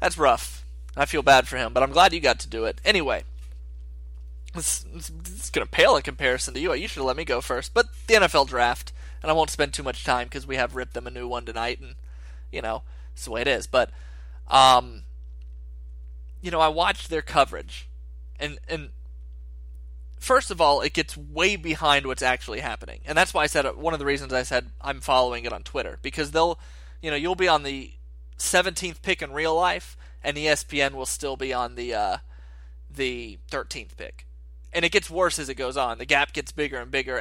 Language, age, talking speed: English, 20-39, 215 wpm